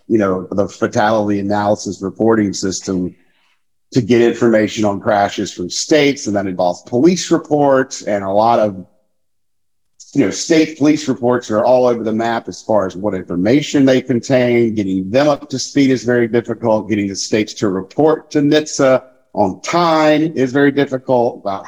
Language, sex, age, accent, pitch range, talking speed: English, male, 50-69, American, 100-130 Hz, 170 wpm